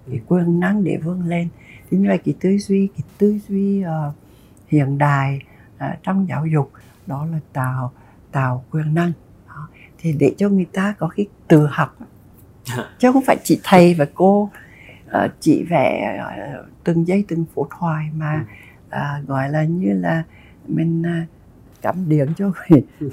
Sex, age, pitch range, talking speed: female, 60-79, 130-165 Hz, 165 wpm